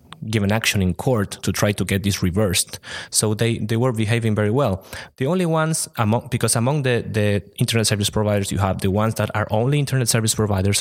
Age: 20-39